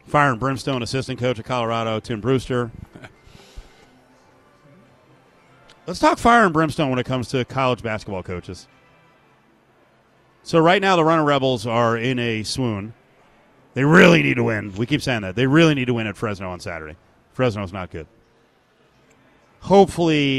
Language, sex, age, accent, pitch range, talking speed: English, male, 40-59, American, 110-140 Hz, 155 wpm